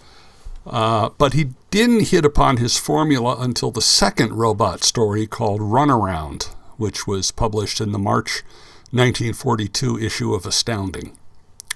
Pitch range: 100-125 Hz